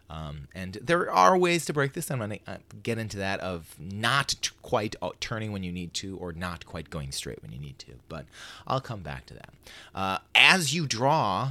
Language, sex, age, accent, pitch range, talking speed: English, male, 30-49, American, 85-125 Hz, 230 wpm